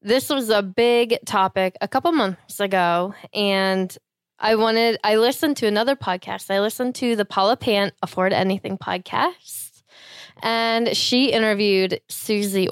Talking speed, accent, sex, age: 140 wpm, American, female, 10-29